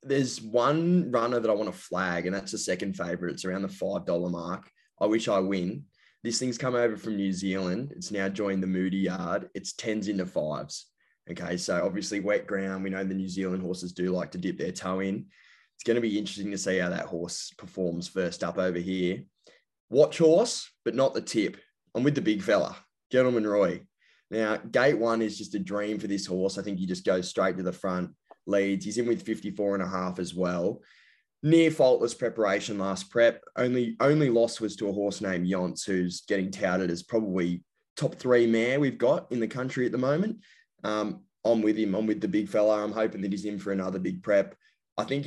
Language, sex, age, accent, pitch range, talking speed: English, male, 20-39, Australian, 95-115 Hz, 215 wpm